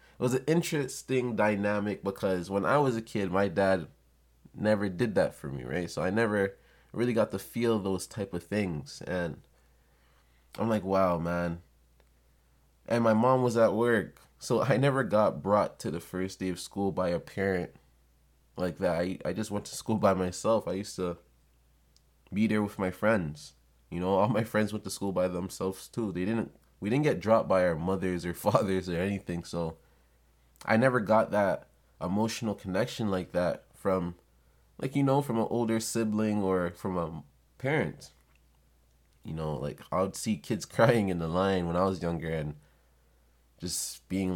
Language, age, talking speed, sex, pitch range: English, 20-39, 185 wpm, male, 75-110 Hz